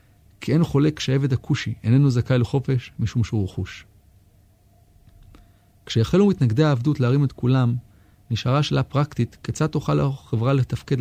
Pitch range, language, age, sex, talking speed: 100-135 Hz, Hebrew, 30-49, male, 130 wpm